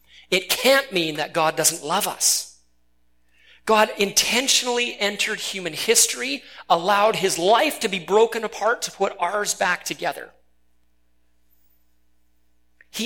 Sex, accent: male, American